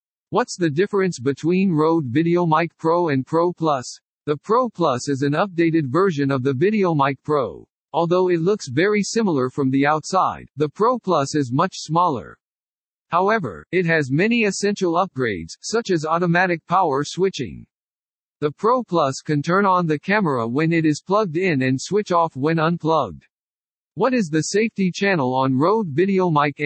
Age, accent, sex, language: 60-79, American, male, English